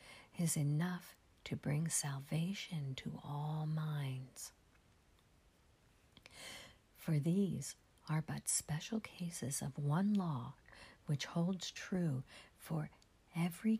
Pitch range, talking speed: 130-185 Hz, 95 wpm